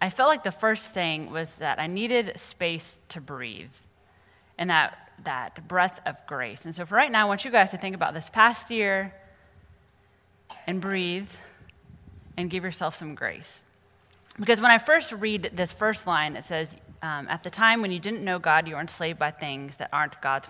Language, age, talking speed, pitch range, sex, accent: English, 20-39, 200 wpm, 145-195 Hz, female, American